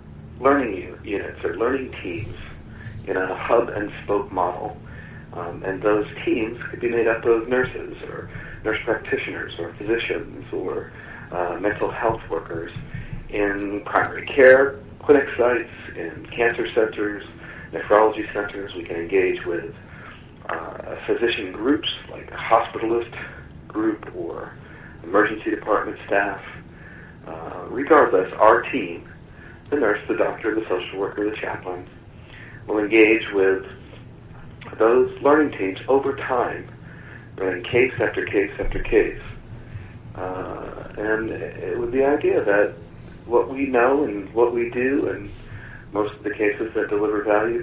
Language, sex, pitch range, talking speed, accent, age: English, male, 105-140 Hz, 130 wpm, American, 40-59